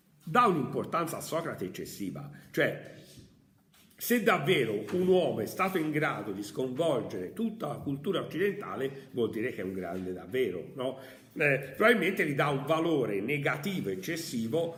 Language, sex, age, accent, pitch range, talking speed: Italian, male, 50-69, native, 115-155 Hz, 140 wpm